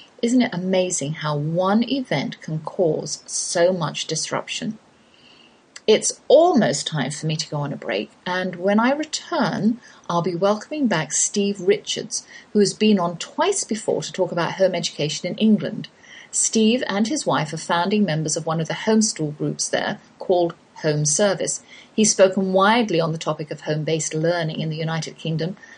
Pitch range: 160-215 Hz